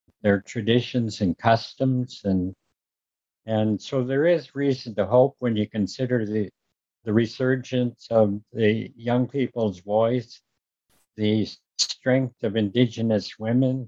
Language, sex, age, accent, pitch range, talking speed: English, male, 60-79, American, 105-125 Hz, 120 wpm